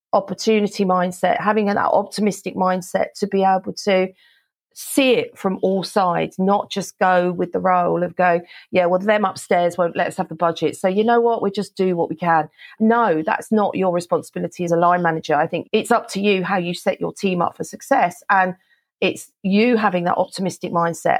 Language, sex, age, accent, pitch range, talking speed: English, female, 40-59, British, 180-215 Hz, 210 wpm